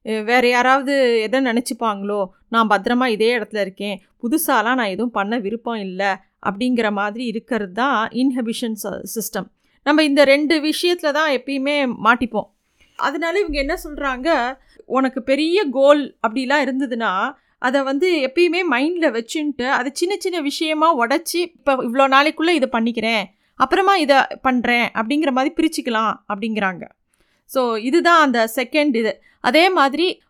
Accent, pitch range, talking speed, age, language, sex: native, 225-295 Hz, 130 wpm, 30-49, Tamil, female